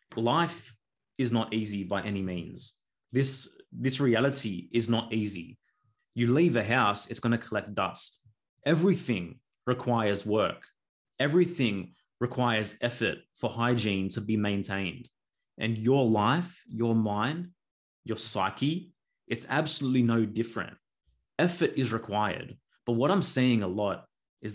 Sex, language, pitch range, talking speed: male, English, 105-125 Hz, 130 wpm